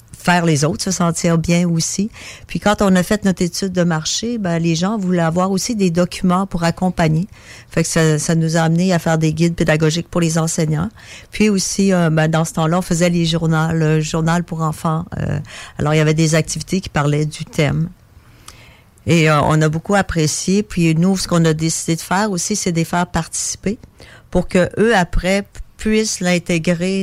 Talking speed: 205 wpm